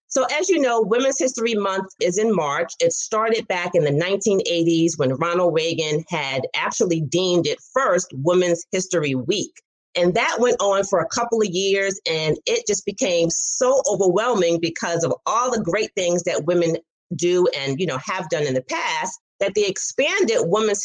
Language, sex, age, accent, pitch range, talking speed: English, female, 40-59, American, 165-220 Hz, 180 wpm